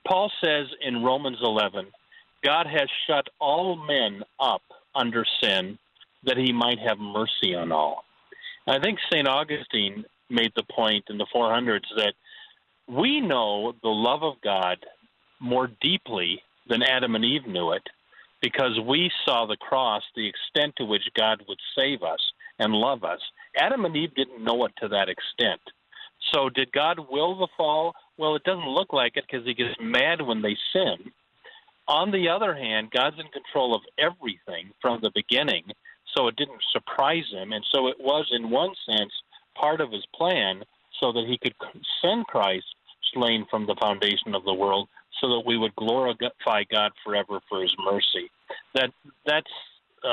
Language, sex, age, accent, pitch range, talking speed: English, male, 50-69, American, 110-155 Hz, 170 wpm